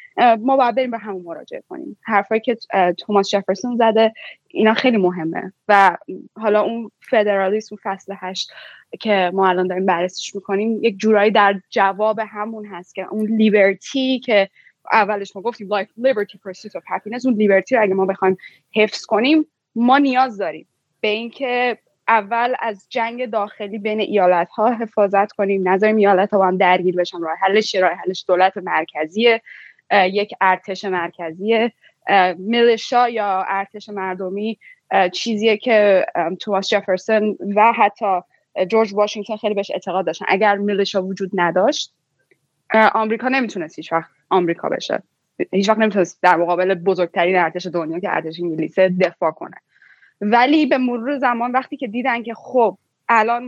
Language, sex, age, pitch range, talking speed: Persian, female, 10-29, 190-230 Hz, 145 wpm